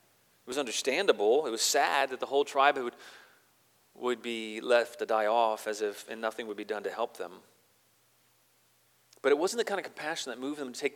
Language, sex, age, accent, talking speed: English, male, 30-49, American, 210 wpm